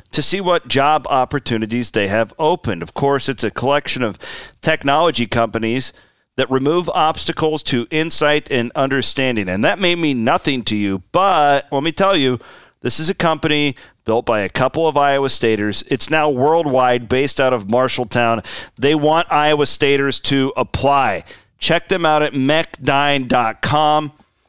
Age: 40-59